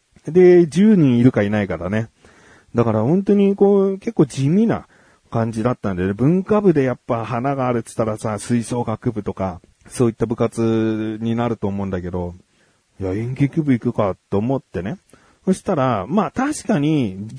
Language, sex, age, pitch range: Japanese, male, 30-49, 100-155 Hz